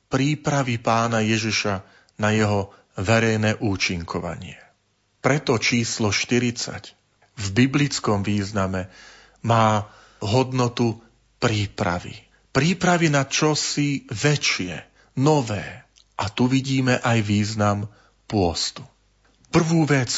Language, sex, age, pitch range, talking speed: Slovak, male, 40-59, 105-135 Hz, 85 wpm